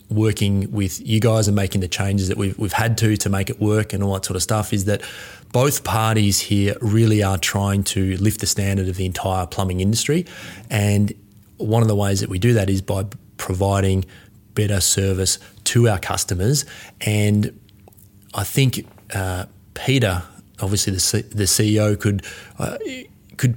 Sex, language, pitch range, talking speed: male, English, 100-110 Hz, 180 wpm